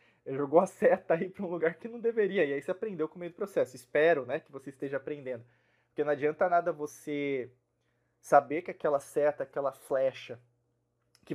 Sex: male